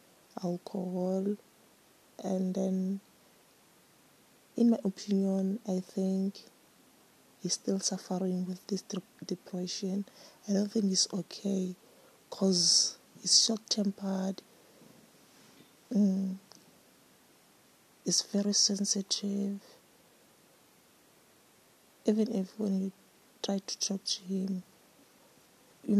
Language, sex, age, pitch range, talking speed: English, female, 20-39, 185-210 Hz, 80 wpm